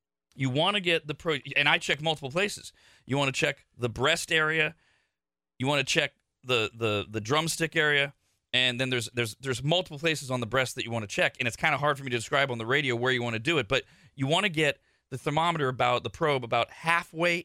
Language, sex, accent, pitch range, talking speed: English, male, American, 125-165 Hz, 250 wpm